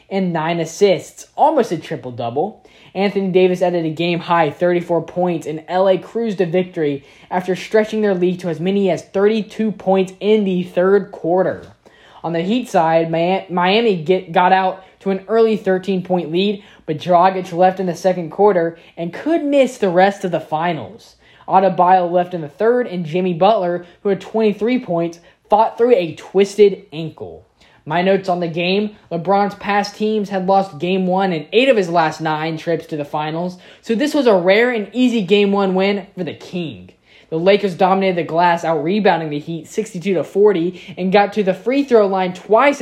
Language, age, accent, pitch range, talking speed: English, 10-29, American, 170-205 Hz, 180 wpm